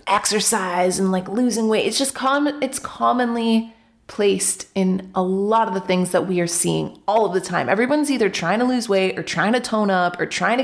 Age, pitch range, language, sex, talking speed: 30-49, 190-250 Hz, English, female, 220 wpm